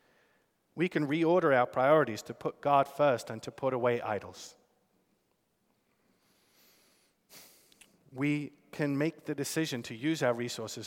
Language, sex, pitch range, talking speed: English, male, 110-135 Hz, 125 wpm